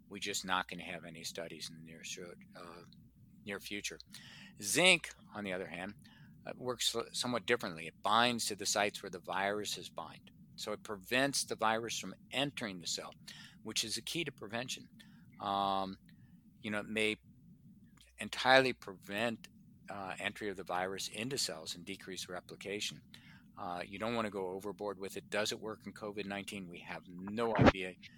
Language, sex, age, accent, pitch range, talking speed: English, male, 50-69, American, 95-115 Hz, 170 wpm